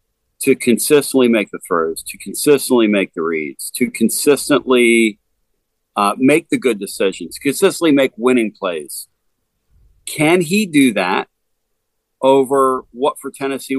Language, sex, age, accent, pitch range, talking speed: English, male, 50-69, American, 105-135 Hz, 125 wpm